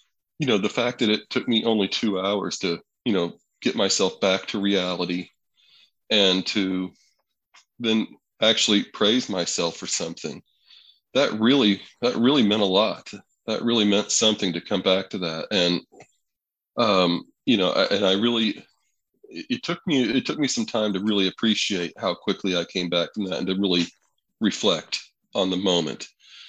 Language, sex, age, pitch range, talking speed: English, male, 40-59, 90-110 Hz, 170 wpm